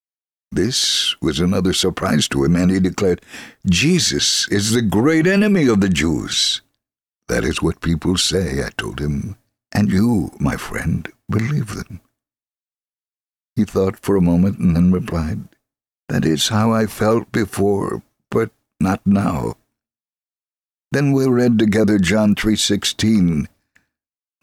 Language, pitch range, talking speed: English, 95-125 Hz, 135 wpm